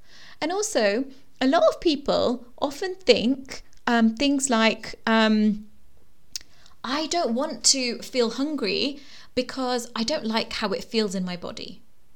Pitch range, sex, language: 200-265 Hz, female, English